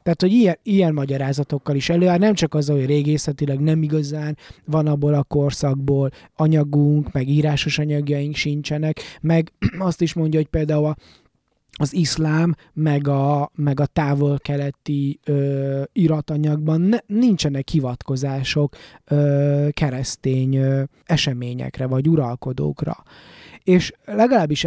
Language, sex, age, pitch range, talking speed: Hungarian, male, 20-39, 135-155 Hz, 120 wpm